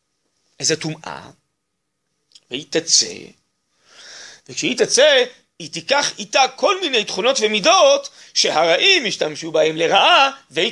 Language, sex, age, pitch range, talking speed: Hebrew, male, 40-59, 160-260 Hz, 100 wpm